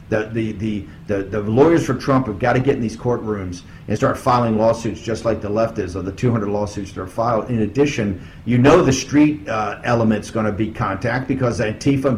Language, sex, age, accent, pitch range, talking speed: English, male, 50-69, American, 115-140 Hz, 220 wpm